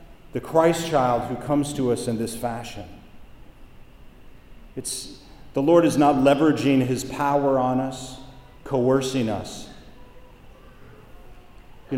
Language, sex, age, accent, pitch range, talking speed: English, male, 40-59, American, 115-135 Hz, 115 wpm